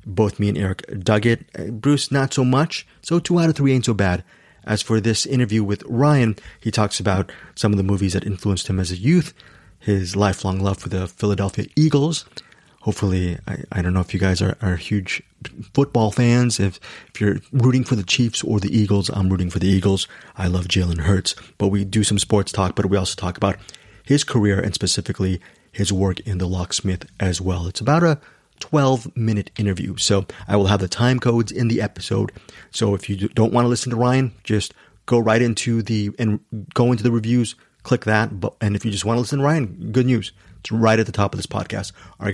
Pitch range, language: 100-120 Hz, English